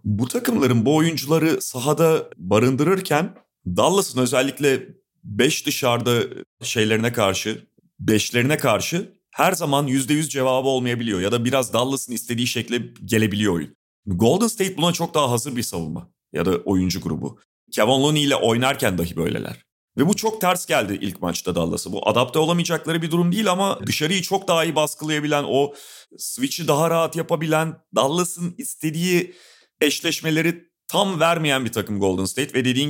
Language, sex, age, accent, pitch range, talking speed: Turkish, male, 40-59, native, 110-150 Hz, 150 wpm